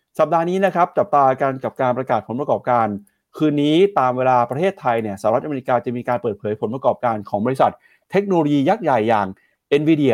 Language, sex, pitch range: Thai, male, 115-145 Hz